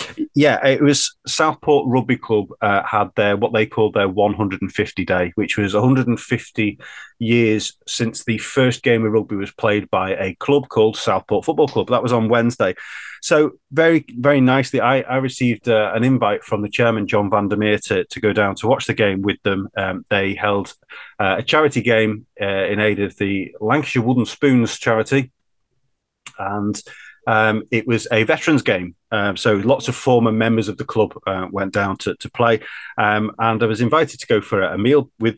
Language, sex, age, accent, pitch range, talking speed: English, male, 30-49, British, 105-125 Hz, 195 wpm